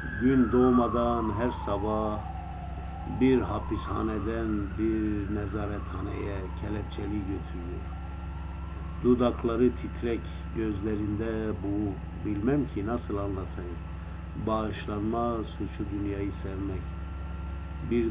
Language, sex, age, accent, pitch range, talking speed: Turkish, male, 50-69, native, 85-105 Hz, 75 wpm